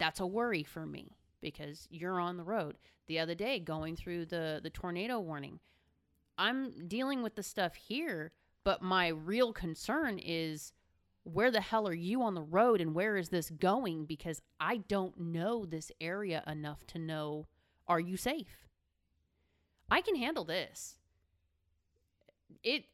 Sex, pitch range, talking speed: female, 155-205 Hz, 155 wpm